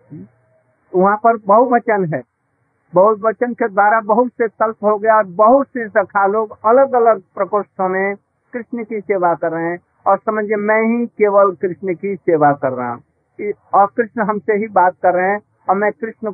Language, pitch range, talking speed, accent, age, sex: Hindi, 170-225 Hz, 175 wpm, native, 50-69, male